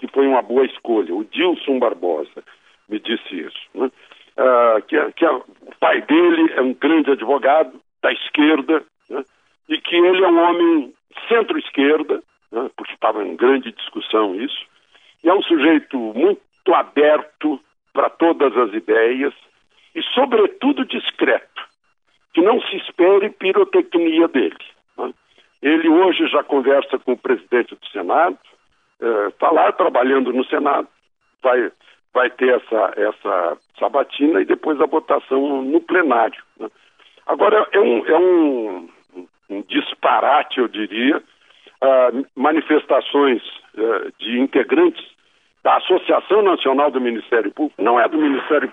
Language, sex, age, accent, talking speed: Portuguese, male, 60-79, Brazilian, 130 wpm